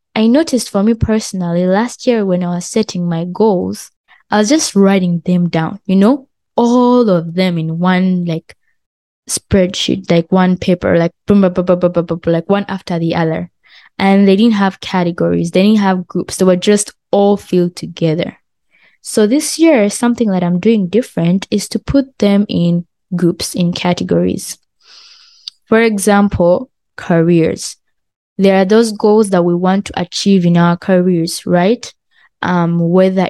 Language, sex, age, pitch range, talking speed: English, female, 20-39, 175-210 Hz, 155 wpm